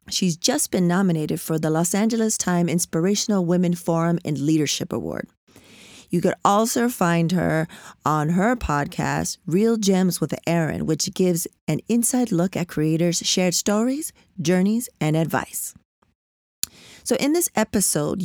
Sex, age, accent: female, 40-59, American